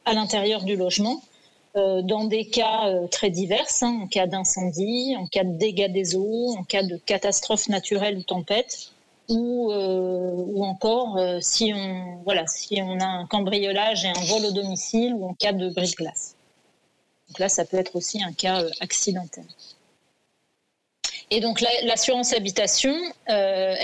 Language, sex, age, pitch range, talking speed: French, female, 30-49, 185-220 Hz, 165 wpm